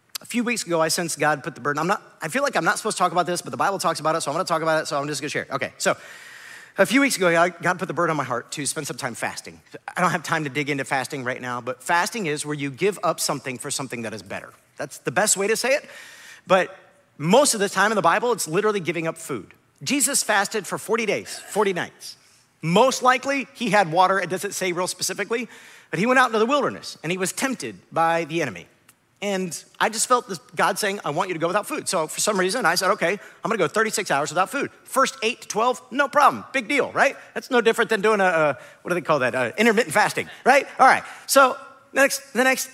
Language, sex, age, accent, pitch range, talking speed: English, male, 50-69, American, 165-240 Hz, 270 wpm